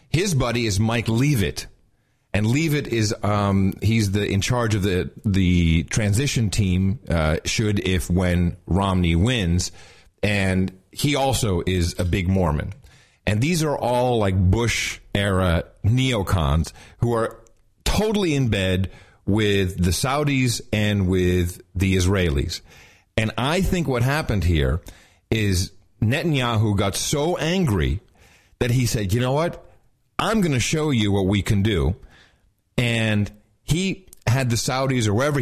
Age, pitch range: 40-59, 95-125 Hz